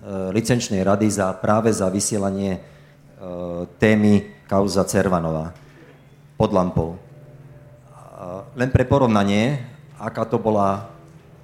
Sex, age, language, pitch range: male, 40-59, Slovak, 100-125 Hz